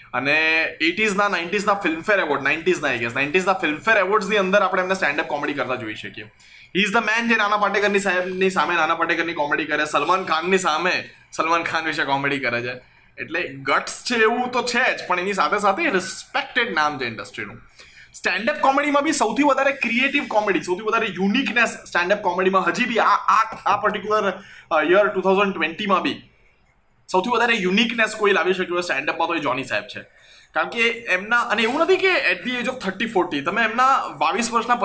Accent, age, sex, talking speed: native, 20-39, male, 130 wpm